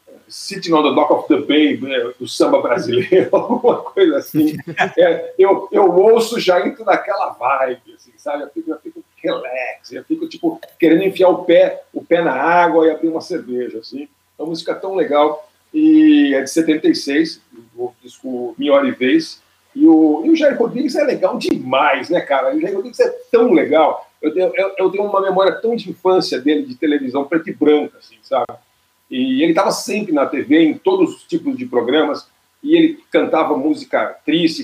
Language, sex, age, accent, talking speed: Portuguese, male, 50-69, Brazilian, 190 wpm